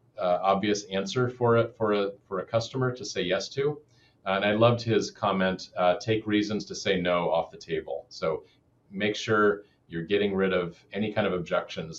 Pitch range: 85-110 Hz